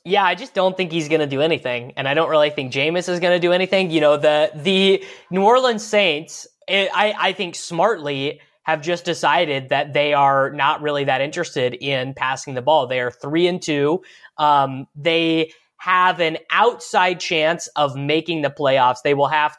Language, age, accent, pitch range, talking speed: English, 20-39, American, 135-170 Hz, 200 wpm